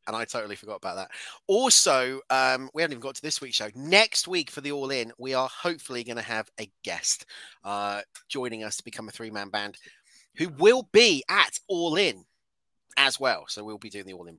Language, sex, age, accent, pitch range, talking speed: English, male, 30-49, British, 125-200 Hz, 220 wpm